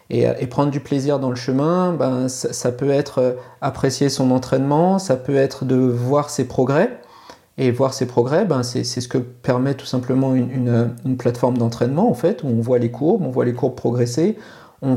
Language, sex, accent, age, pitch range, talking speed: French, male, French, 40-59, 125-150 Hz, 215 wpm